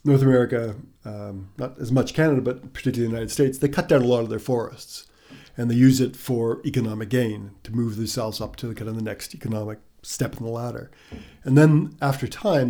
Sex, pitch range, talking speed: male, 110-135 Hz, 215 wpm